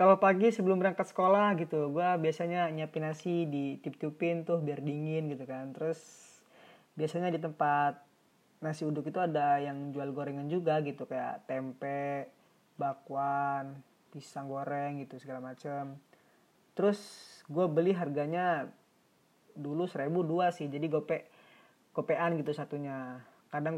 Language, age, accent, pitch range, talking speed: Indonesian, 20-39, native, 150-210 Hz, 135 wpm